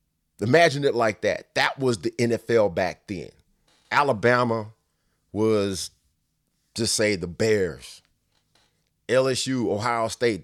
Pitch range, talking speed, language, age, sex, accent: 100-130 Hz, 110 wpm, English, 30-49, male, American